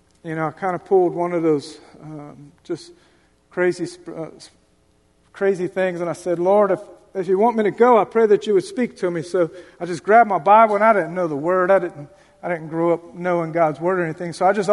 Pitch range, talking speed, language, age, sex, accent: 170-210 Hz, 245 wpm, English, 40-59, male, American